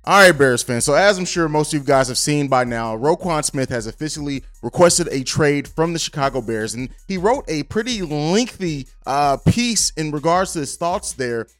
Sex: male